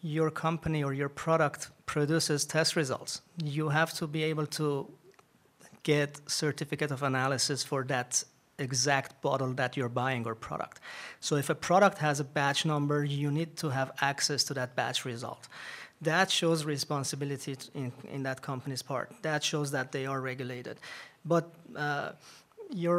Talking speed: 160 wpm